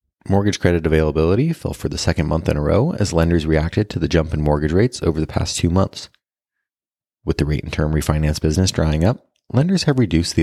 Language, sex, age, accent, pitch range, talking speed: English, male, 30-49, American, 75-100 Hz, 220 wpm